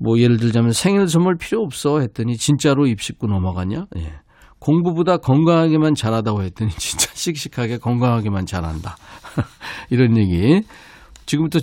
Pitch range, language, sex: 105-150 Hz, Korean, male